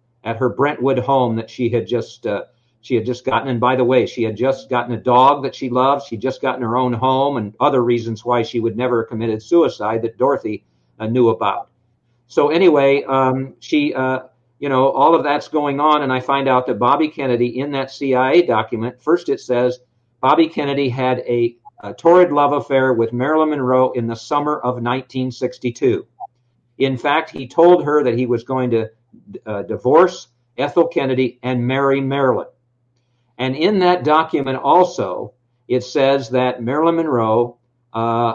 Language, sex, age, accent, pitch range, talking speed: English, male, 50-69, American, 120-140 Hz, 180 wpm